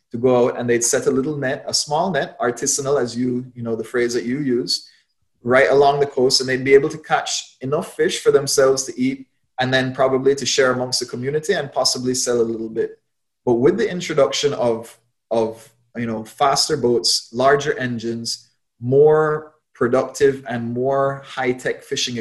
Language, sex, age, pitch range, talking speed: English, male, 20-39, 115-140 Hz, 190 wpm